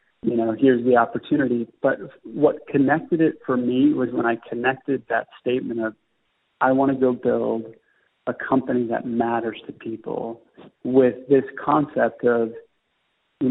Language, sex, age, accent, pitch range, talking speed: English, male, 40-59, American, 120-135 Hz, 150 wpm